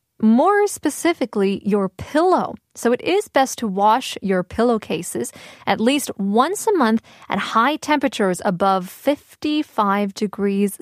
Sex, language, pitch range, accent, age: female, Korean, 205-305 Hz, American, 20-39